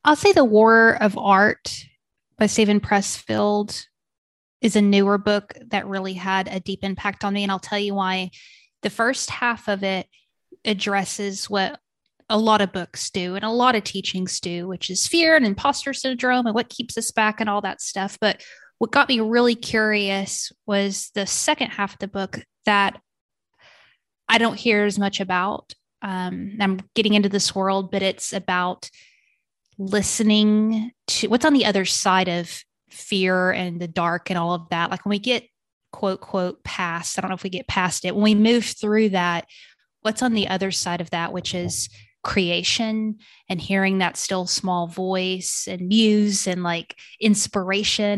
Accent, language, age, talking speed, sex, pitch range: American, English, 20-39, 180 wpm, female, 185-215 Hz